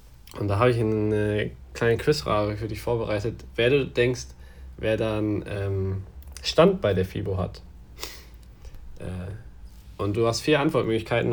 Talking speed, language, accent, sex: 145 wpm, German, German, male